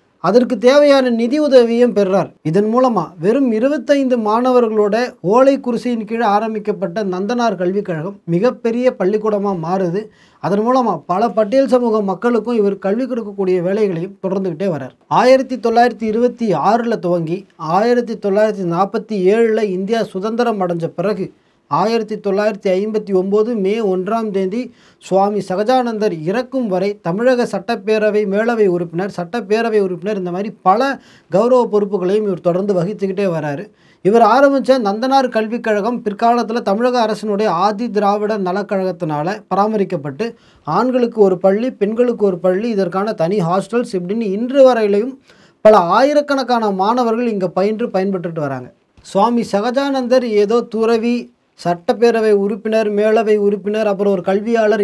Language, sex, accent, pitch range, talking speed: Tamil, male, native, 195-240 Hz, 120 wpm